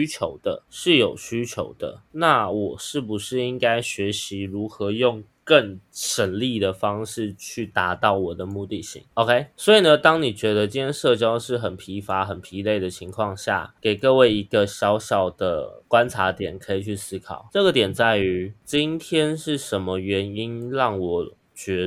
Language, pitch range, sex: Chinese, 95-120 Hz, male